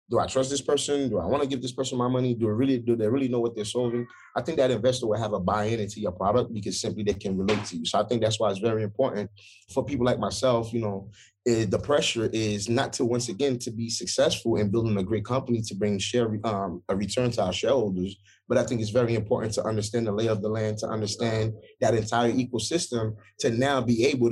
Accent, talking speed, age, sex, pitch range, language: American, 255 wpm, 30-49, male, 105-125 Hz, English